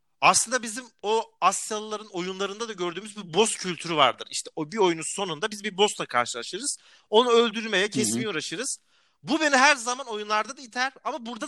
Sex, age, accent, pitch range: male, 40-59, native, 180-230 Hz